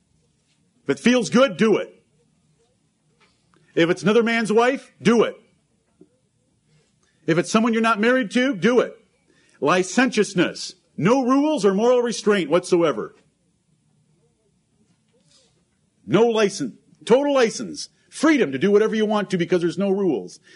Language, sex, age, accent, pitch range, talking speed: English, male, 50-69, American, 170-240 Hz, 130 wpm